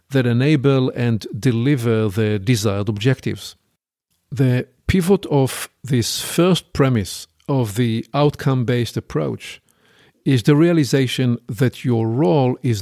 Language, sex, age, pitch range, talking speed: English, male, 50-69, 115-145 Hz, 110 wpm